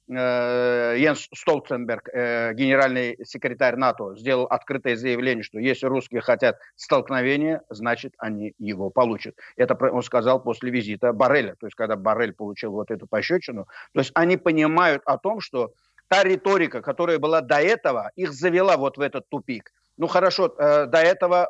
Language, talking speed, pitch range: Ukrainian, 155 wpm, 130-170 Hz